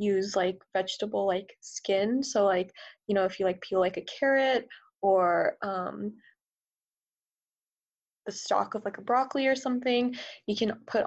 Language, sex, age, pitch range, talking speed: English, female, 20-39, 195-240 Hz, 155 wpm